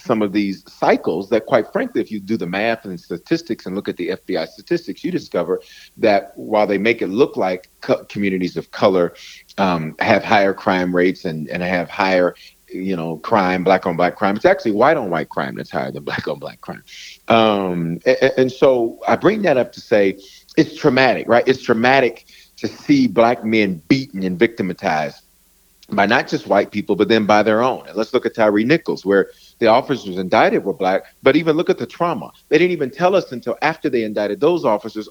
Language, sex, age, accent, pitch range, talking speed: English, male, 40-59, American, 100-155 Hz, 210 wpm